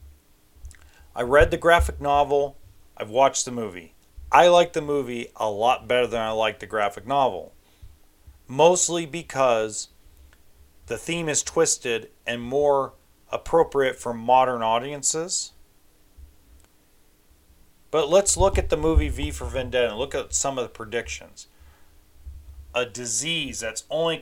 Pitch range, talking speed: 90-135 Hz, 135 wpm